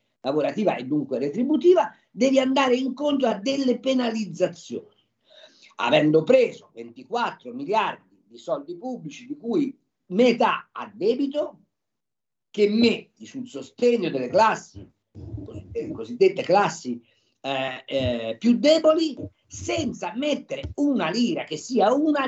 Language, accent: Italian, native